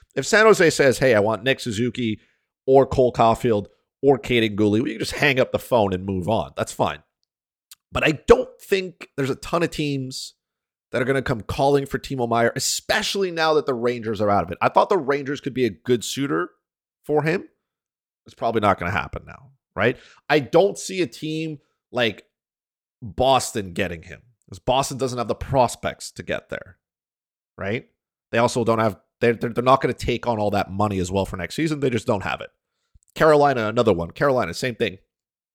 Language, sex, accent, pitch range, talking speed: English, male, American, 115-155 Hz, 205 wpm